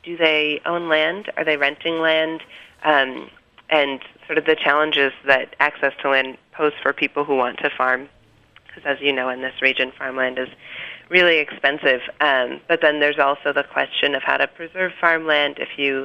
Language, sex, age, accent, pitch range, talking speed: English, female, 30-49, American, 135-160 Hz, 185 wpm